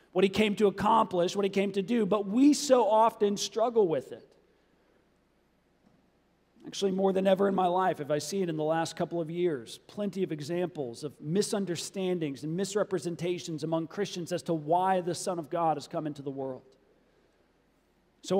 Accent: American